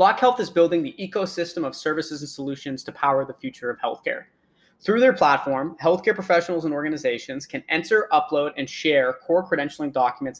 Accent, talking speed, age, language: American, 175 wpm, 30-49, English